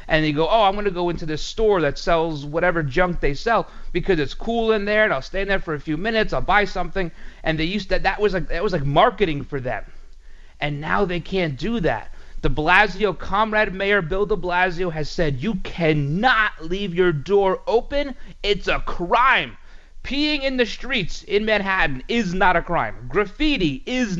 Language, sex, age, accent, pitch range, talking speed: English, male, 30-49, American, 160-230 Hz, 205 wpm